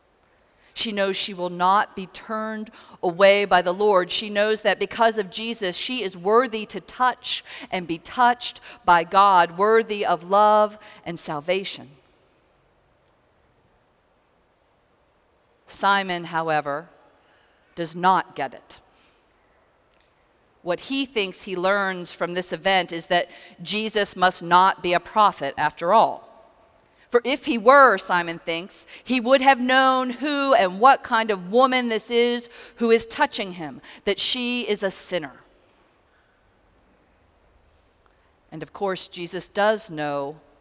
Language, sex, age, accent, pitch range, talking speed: English, female, 50-69, American, 175-220 Hz, 130 wpm